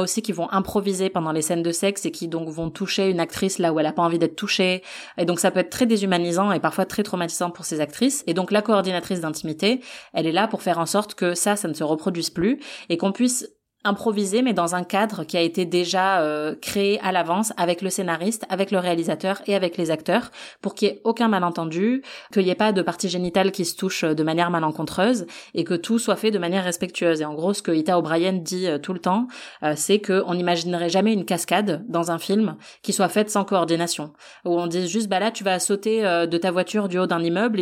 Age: 30-49